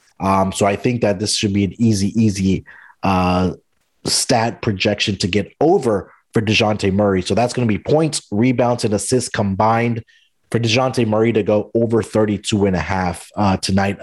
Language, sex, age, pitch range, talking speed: English, male, 30-49, 105-135 Hz, 180 wpm